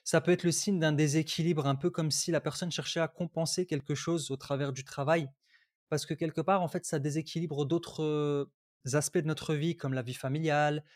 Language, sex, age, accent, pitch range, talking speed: French, male, 20-39, French, 140-170 Hz, 215 wpm